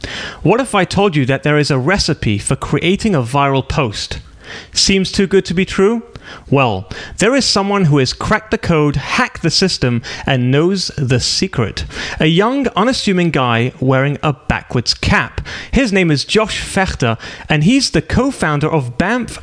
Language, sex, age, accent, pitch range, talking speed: English, male, 30-49, British, 140-205 Hz, 175 wpm